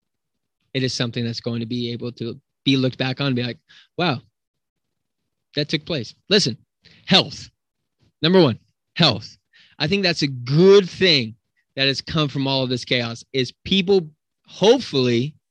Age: 20-39